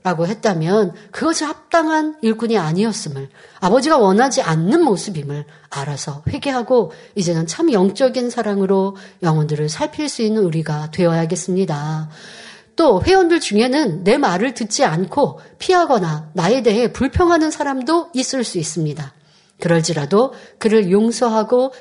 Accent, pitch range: native, 185-260 Hz